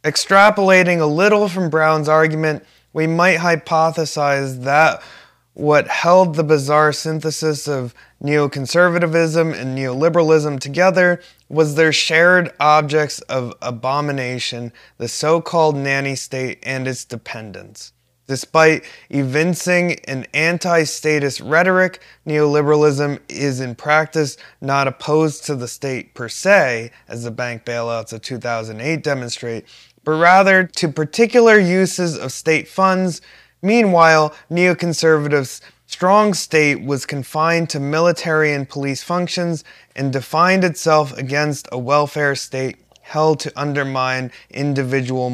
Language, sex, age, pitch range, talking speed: English, male, 20-39, 130-165 Hz, 115 wpm